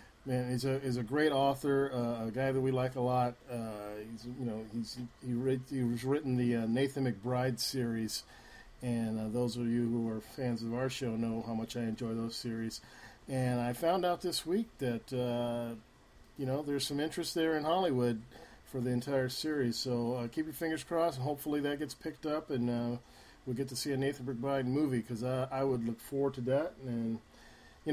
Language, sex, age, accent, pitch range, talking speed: English, male, 50-69, American, 120-140 Hz, 215 wpm